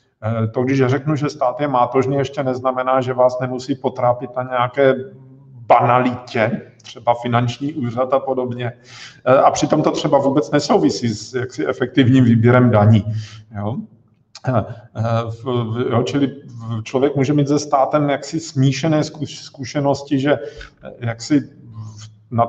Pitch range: 120-135 Hz